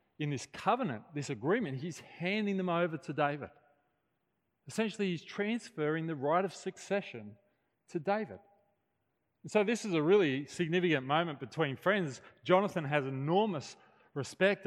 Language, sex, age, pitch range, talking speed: English, male, 30-49, 135-175 Hz, 140 wpm